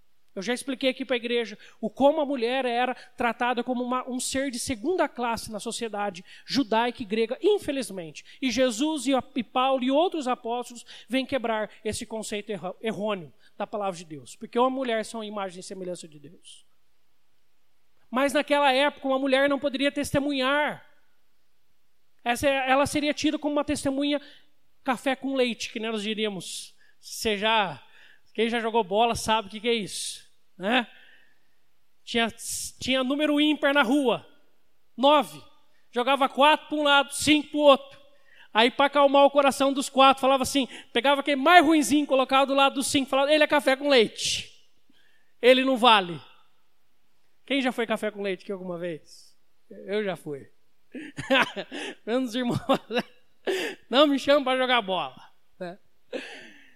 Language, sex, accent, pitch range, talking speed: Portuguese, male, Brazilian, 225-280 Hz, 155 wpm